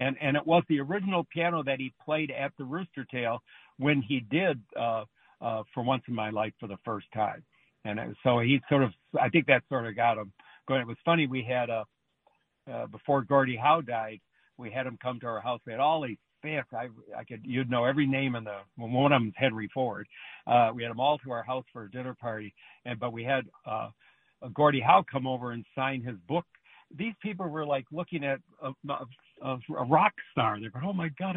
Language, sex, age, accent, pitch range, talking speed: English, male, 60-79, American, 125-155 Hz, 225 wpm